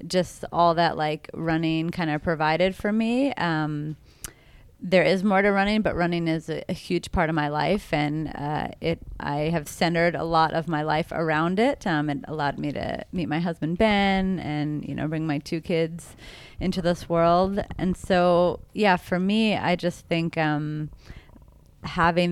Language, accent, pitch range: English, American, 150-170 Hz